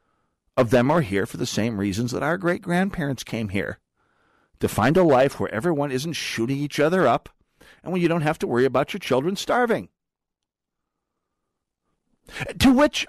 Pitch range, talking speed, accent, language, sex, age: 105-160 Hz, 170 wpm, American, English, male, 50-69